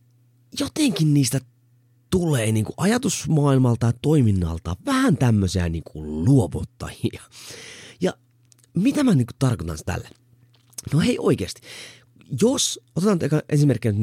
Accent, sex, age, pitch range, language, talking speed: native, male, 30-49, 105-155 Hz, Finnish, 105 wpm